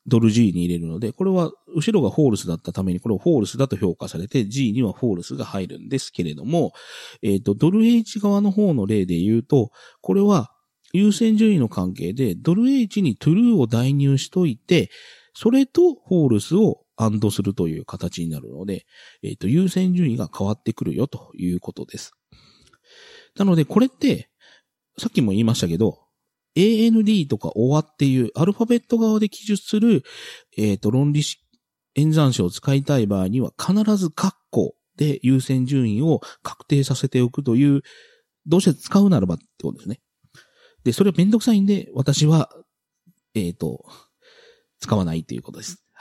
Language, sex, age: Japanese, male, 40-59